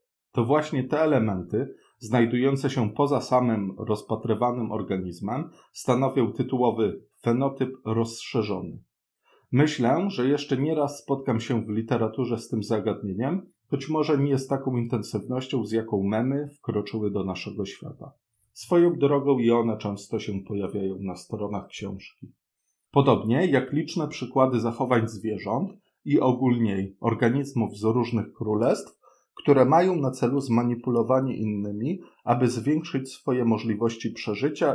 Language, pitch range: Polish, 110-135 Hz